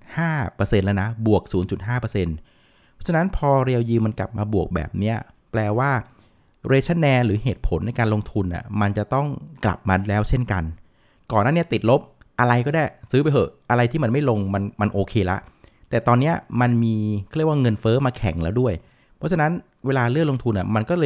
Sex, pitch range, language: male, 100-130 Hz, Thai